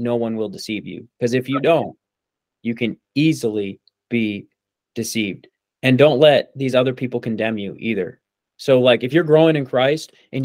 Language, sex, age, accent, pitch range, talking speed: English, male, 20-39, American, 120-145 Hz, 180 wpm